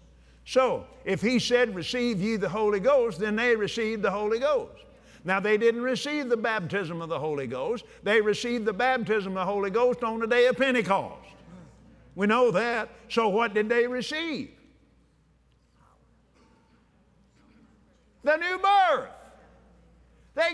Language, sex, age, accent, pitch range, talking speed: English, male, 50-69, American, 225-300 Hz, 145 wpm